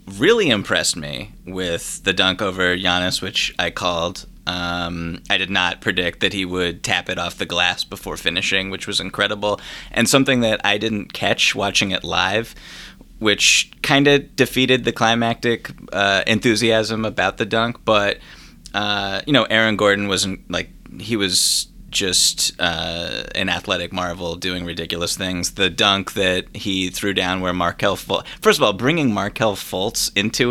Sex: male